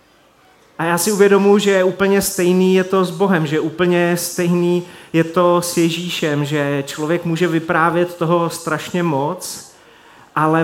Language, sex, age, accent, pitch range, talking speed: Czech, male, 30-49, native, 160-185 Hz, 145 wpm